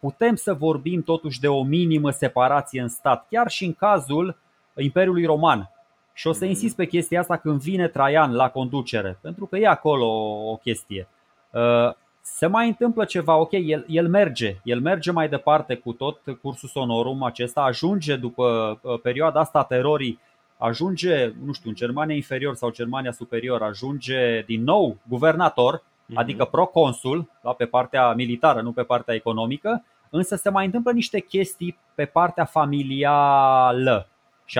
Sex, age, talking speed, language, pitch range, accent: male, 20-39, 160 wpm, Romanian, 125-170 Hz, native